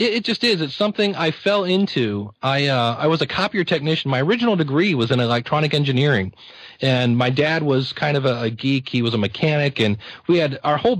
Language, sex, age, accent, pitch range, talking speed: English, male, 40-59, American, 125-175 Hz, 220 wpm